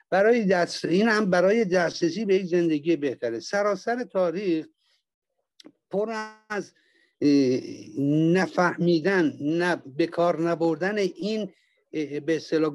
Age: 60-79